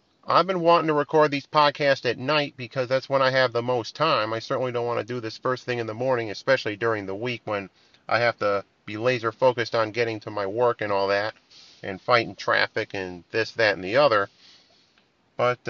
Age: 40-59